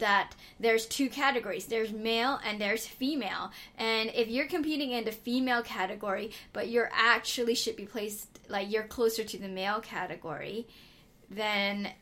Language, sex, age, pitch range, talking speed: English, female, 10-29, 195-235 Hz, 155 wpm